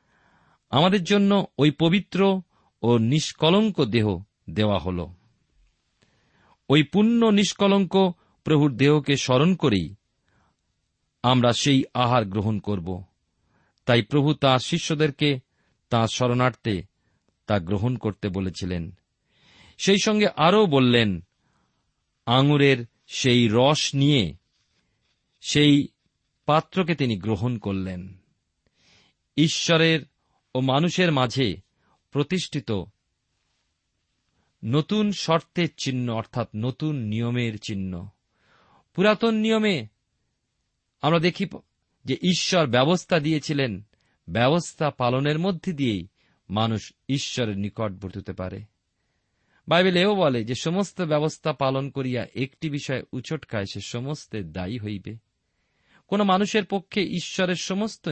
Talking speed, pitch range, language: 95 wpm, 110-160 Hz, Bengali